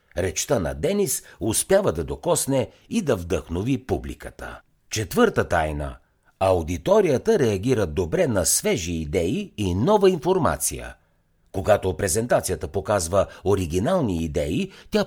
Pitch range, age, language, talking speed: 80-125 Hz, 60-79, Bulgarian, 110 wpm